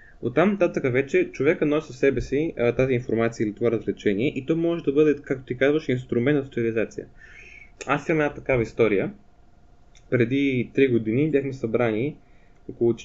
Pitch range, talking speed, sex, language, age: 110-150 Hz, 160 wpm, male, Bulgarian, 20-39